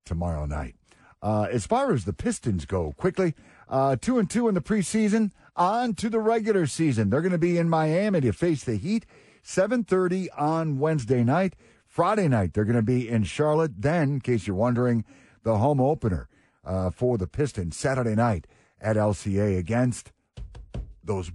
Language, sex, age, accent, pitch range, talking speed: English, male, 50-69, American, 100-150 Hz, 175 wpm